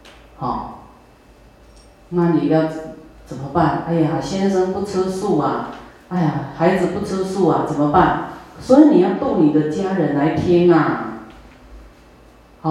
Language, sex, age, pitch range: Chinese, female, 40-59, 150-175 Hz